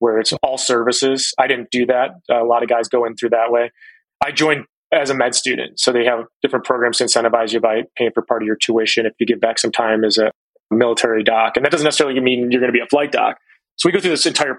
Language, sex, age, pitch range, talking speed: English, male, 30-49, 120-130 Hz, 270 wpm